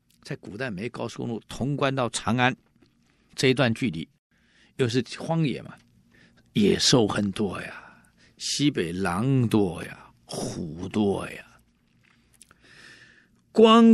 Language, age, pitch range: Chinese, 50-69, 105-165 Hz